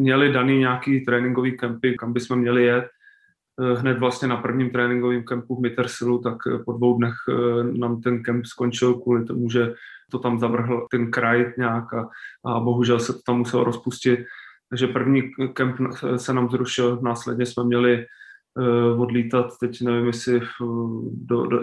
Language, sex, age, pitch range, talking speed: Czech, male, 20-39, 120-125 Hz, 160 wpm